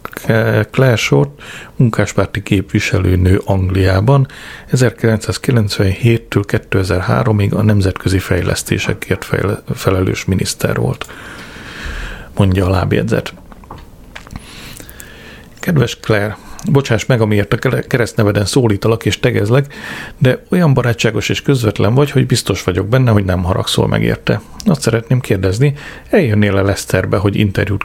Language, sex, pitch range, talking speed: Hungarian, male, 95-115 Hz, 105 wpm